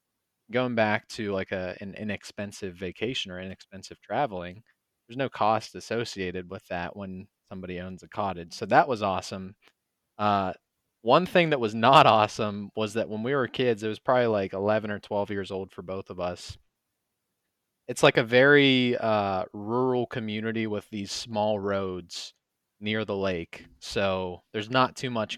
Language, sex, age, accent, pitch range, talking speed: English, male, 20-39, American, 95-125 Hz, 170 wpm